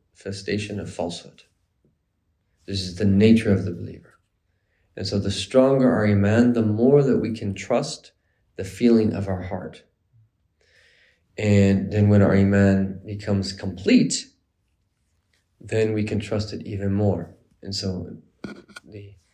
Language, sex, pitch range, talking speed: English, male, 95-110 Hz, 135 wpm